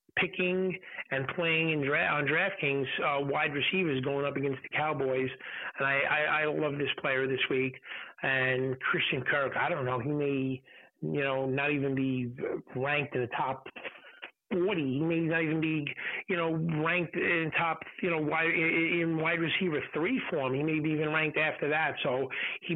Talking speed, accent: 180 wpm, American